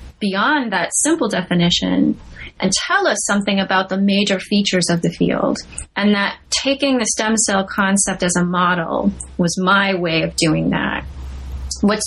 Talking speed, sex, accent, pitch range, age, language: 160 wpm, female, American, 175-220 Hz, 30-49, English